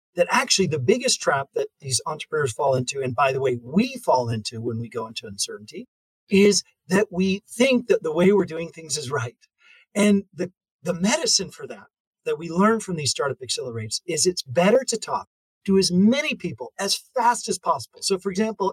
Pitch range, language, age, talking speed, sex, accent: 170-235 Hz, English, 40-59, 200 wpm, male, American